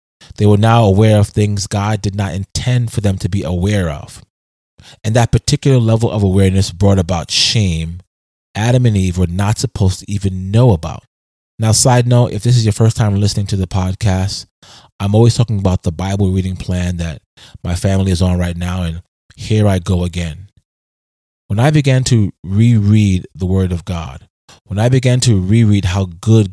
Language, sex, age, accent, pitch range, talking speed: English, male, 30-49, American, 90-110 Hz, 190 wpm